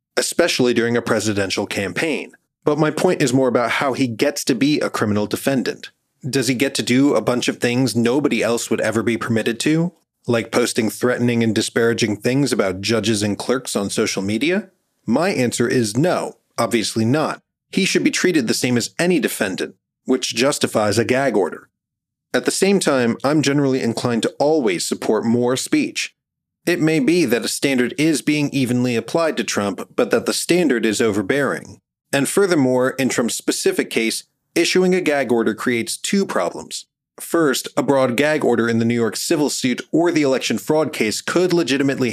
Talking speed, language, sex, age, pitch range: 185 wpm, English, male, 30-49, 115-145 Hz